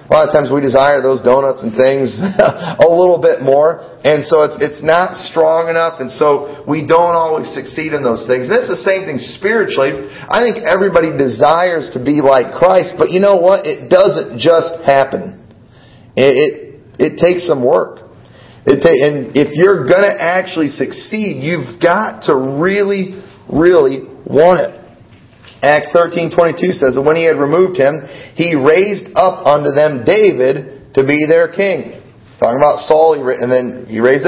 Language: English